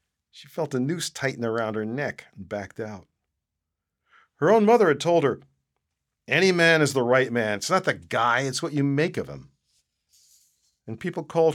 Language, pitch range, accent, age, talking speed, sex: English, 100-165 Hz, American, 50-69, 185 wpm, male